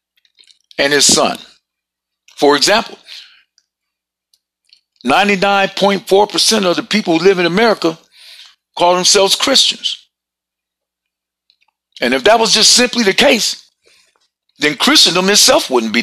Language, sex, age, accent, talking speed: English, male, 50-69, American, 125 wpm